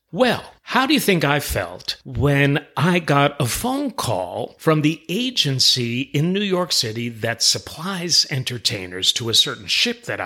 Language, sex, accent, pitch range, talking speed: English, male, American, 115-175 Hz, 165 wpm